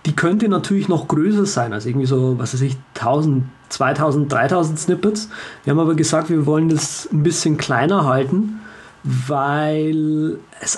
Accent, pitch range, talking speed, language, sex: German, 145-185 Hz, 160 wpm, German, male